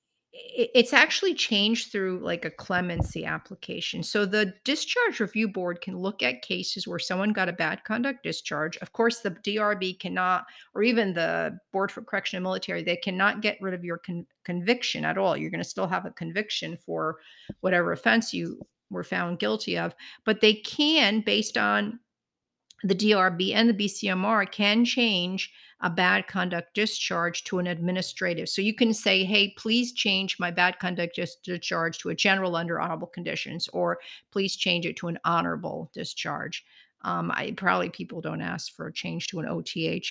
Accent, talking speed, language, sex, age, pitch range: American, 175 wpm, English, female, 50-69, 175-230 Hz